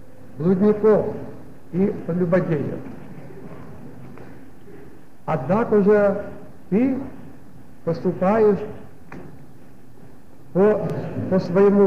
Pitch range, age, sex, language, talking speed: 150-205 Hz, 60-79, male, Russian, 60 wpm